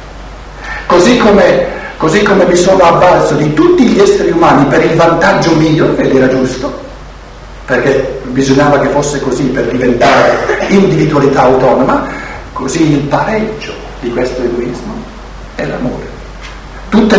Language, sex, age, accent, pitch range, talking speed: Italian, male, 60-79, native, 125-190 Hz, 130 wpm